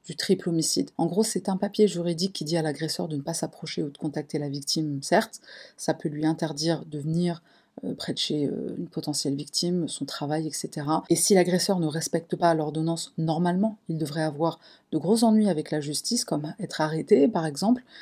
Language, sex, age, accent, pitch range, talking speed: French, female, 40-59, French, 155-195 Hz, 200 wpm